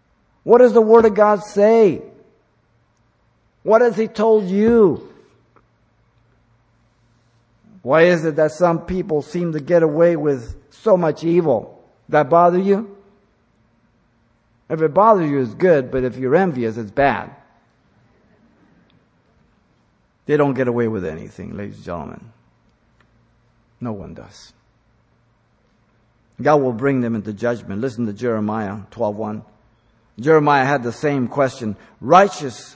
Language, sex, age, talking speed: English, male, 50-69, 130 wpm